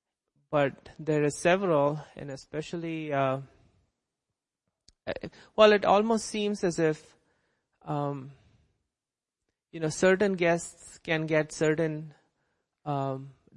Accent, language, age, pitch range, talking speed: Indian, English, 30-49, 140-160 Hz, 95 wpm